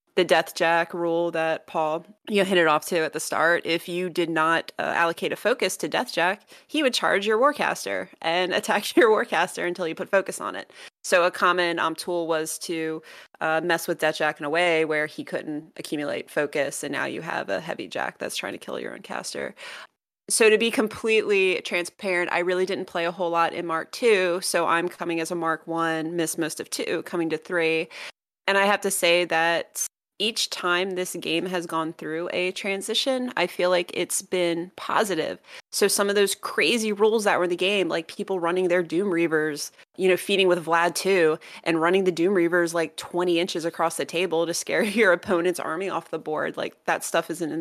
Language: English